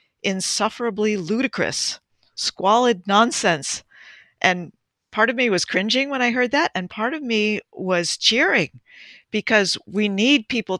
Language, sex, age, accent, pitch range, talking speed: English, female, 50-69, American, 175-225 Hz, 135 wpm